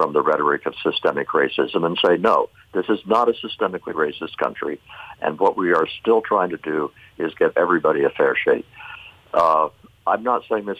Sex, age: male, 60-79